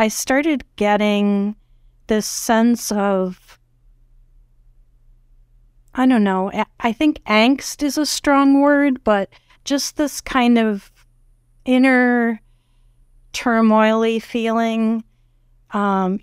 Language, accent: English, American